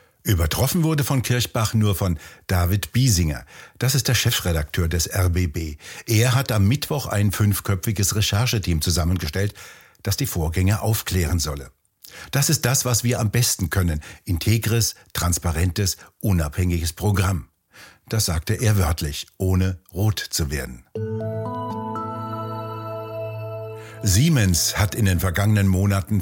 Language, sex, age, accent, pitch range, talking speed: German, male, 60-79, German, 90-110 Hz, 120 wpm